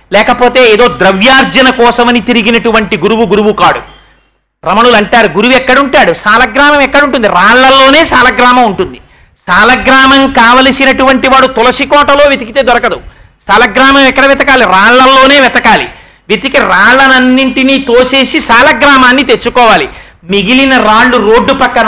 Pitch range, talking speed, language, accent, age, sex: 230-275 Hz, 105 wpm, Telugu, native, 40-59, male